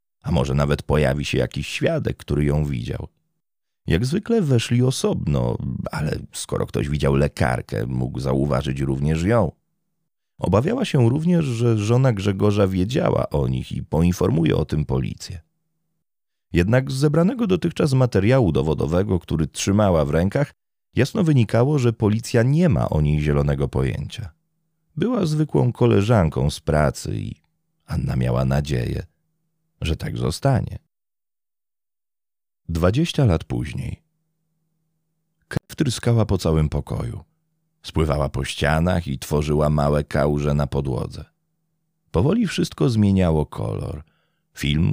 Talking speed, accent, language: 120 wpm, native, Polish